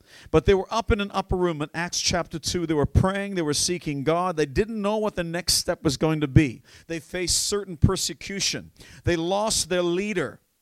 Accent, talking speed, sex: American, 215 wpm, male